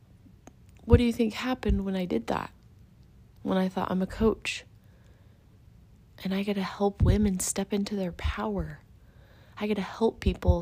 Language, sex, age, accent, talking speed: English, female, 20-39, American, 170 wpm